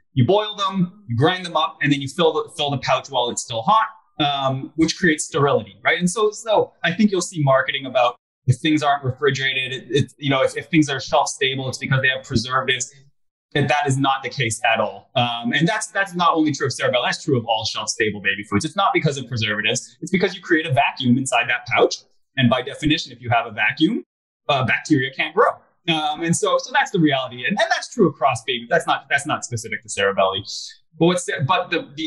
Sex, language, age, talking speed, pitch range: male, English, 20-39, 235 wpm, 125-175 Hz